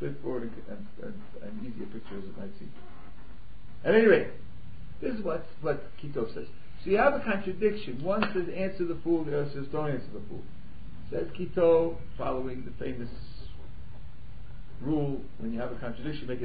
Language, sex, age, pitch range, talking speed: English, male, 50-69, 125-200 Hz, 175 wpm